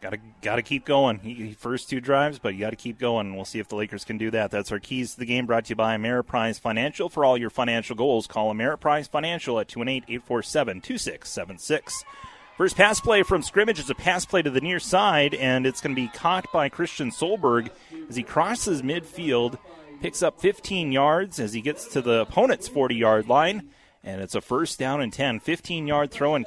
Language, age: English, 30-49